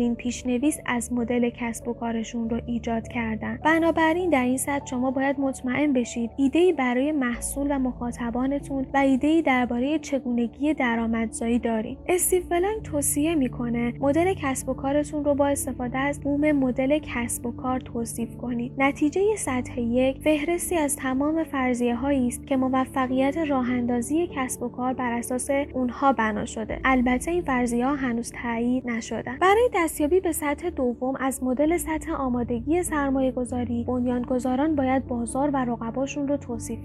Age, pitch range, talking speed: 10-29, 245-285 Hz, 155 wpm